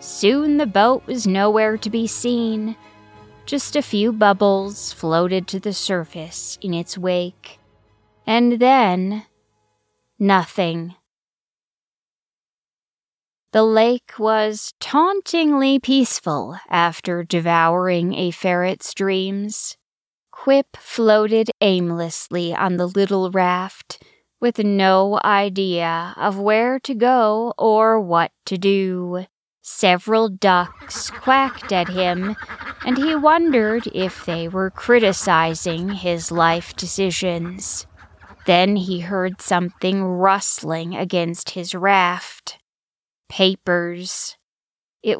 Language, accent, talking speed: English, American, 100 wpm